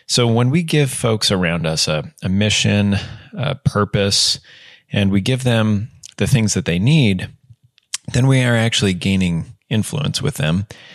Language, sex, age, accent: English, male, 30-49, American